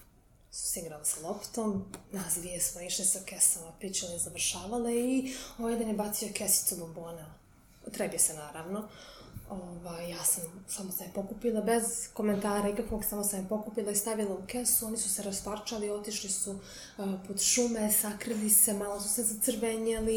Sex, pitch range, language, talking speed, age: female, 190-240 Hz, English, 160 wpm, 20-39